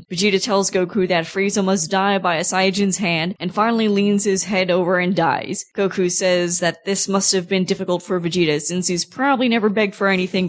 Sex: female